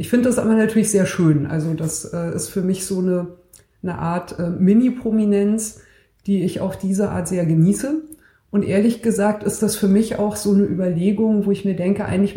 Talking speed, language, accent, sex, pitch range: 205 wpm, German, German, female, 175-215 Hz